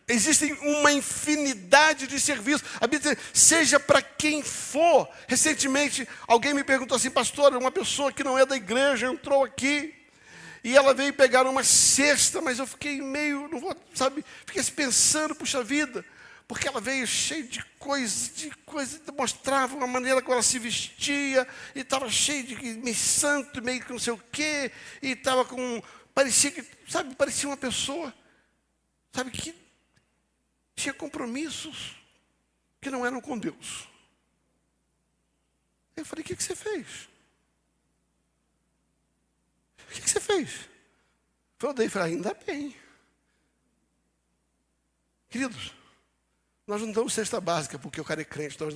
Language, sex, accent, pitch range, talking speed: Portuguese, male, Brazilian, 230-285 Hz, 145 wpm